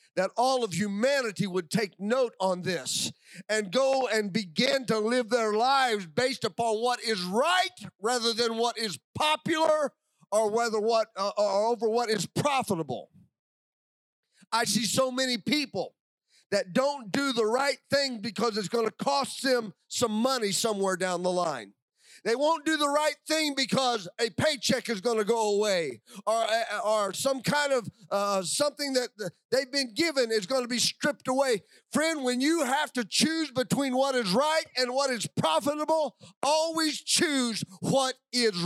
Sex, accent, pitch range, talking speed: male, American, 200-260 Hz, 170 wpm